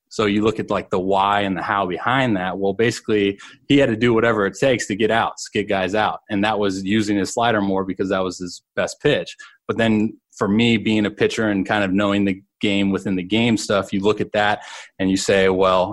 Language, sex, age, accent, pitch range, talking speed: English, male, 20-39, American, 95-110 Hz, 250 wpm